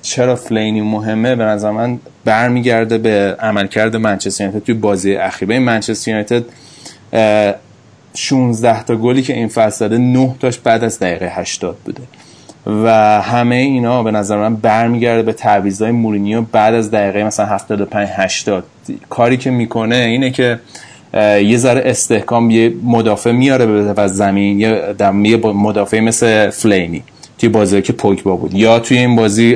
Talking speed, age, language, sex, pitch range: 150 wpm, 30-49, Persian, male, 105-120 Hz